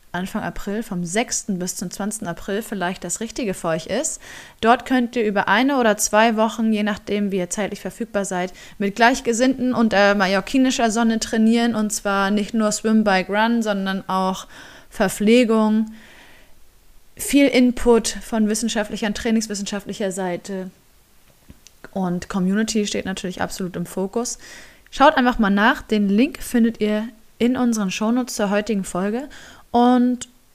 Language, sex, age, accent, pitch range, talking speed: German, female, 20-39, German, 200-245 Hz, 145 wpm